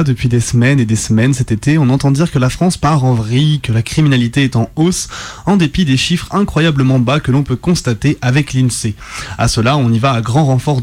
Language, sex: French, male